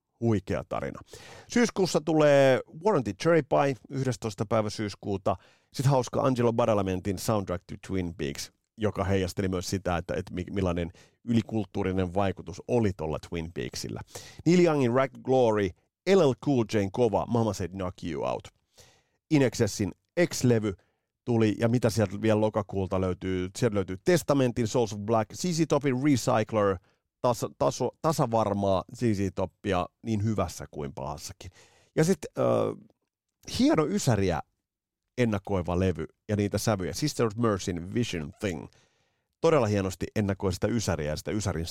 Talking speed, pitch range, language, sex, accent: 130 wpm, 95-120 Hz, Finnish, male, native